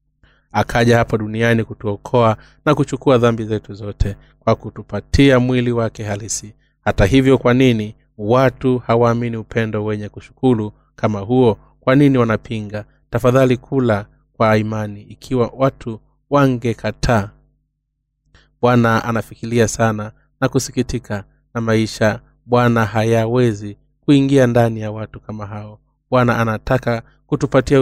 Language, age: Swahili, 30-49